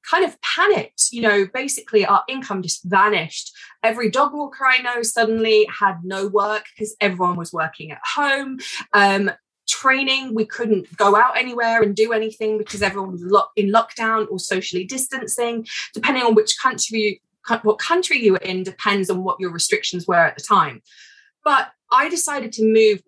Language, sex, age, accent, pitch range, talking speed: English, female, 20-39, British, 195-265 Hz, 170 wpm